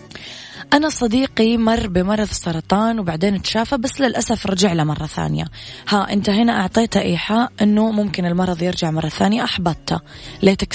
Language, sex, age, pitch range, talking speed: Arabic, female, 20-39, 160-210 Hz, 140 wpm